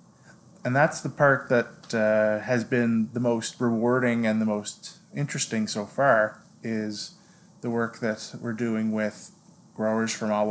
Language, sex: English, male